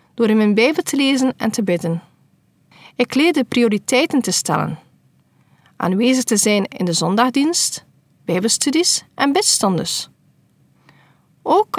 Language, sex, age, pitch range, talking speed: Dutch, female, 40-59, 195-275 Hz, 120 wpm